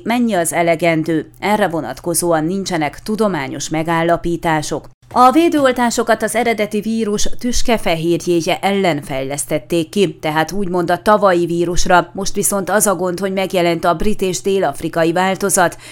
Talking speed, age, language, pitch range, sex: 130 wpm, 30-49, Hungarian, 170-215 Hz, female